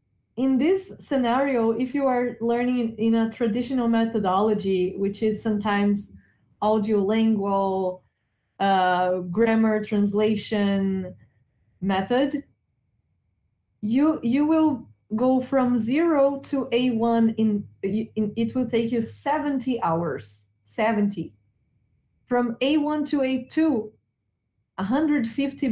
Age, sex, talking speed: 20-39, female, 100 wpm